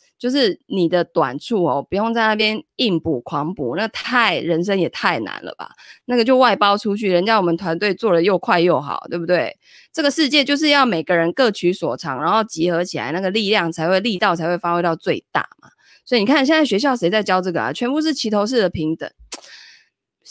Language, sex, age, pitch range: Chinese, female, 20-39, 165-225 Hz